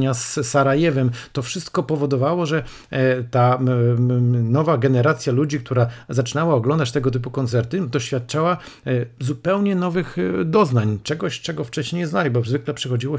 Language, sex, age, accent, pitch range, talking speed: Polish, male, 50-69, native, 120-145 Hz, 125 wpm